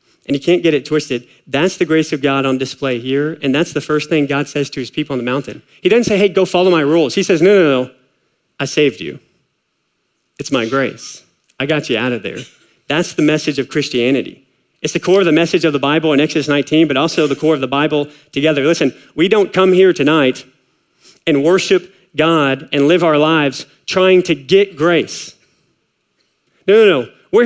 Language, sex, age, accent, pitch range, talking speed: English, male, 40-59, American, 140-190 Hz, 215 wpm